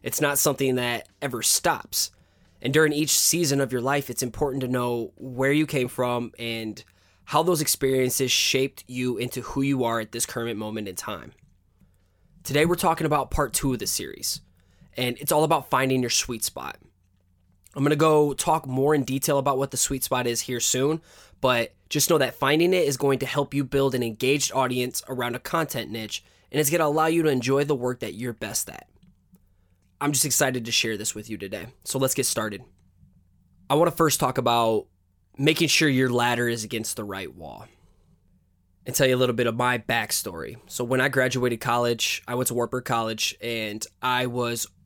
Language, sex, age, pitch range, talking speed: English, male, 20-39, 110-140 Hz, 205 wpm